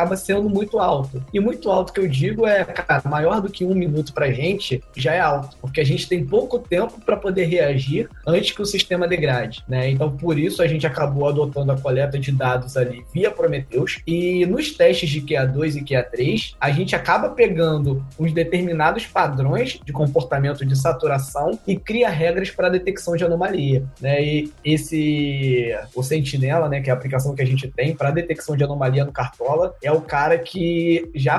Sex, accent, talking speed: male, Brazilian, 195 wpm